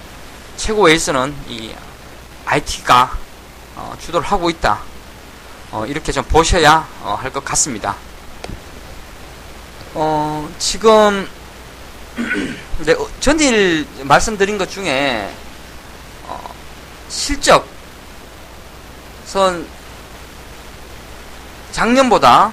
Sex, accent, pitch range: male, native, 130-210 Hz